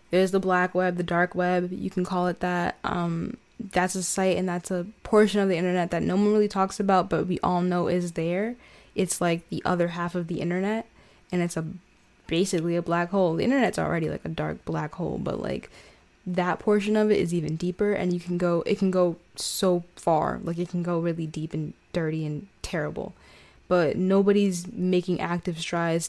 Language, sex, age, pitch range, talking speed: English, female, 10-29, 165-190 Hz, 210 wpm